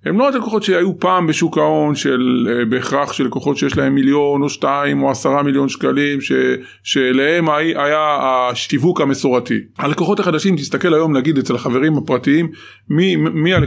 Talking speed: 150 wpm